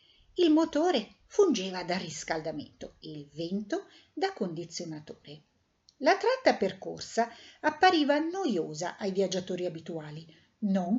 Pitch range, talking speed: 165-245 Hz, 105 wpm